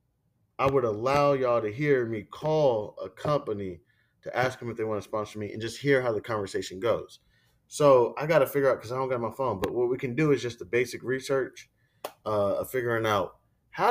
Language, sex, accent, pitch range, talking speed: English, male, American, 110-145 Hz, 230 wpm